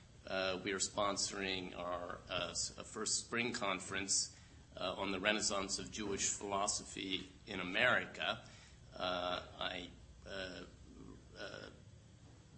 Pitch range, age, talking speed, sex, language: 95-110 Hz, 30-49, 105 wpm, male, English